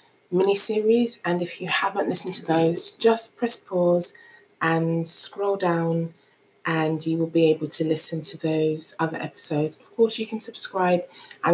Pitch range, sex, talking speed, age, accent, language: 165-195 Hz, female, 160 wpm, 20-39, British, English